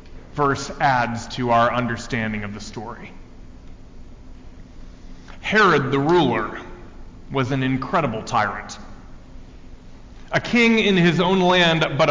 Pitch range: 130-190 Hz